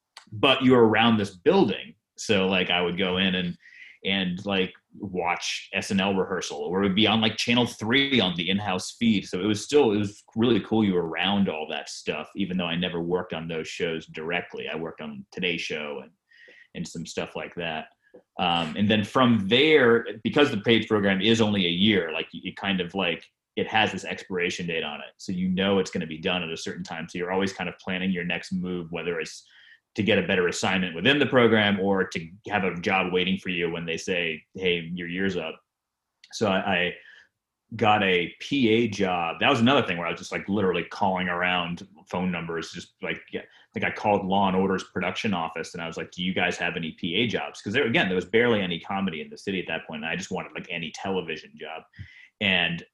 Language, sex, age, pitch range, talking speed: English, male, 30-49, 90-110 Hz, 230 wpm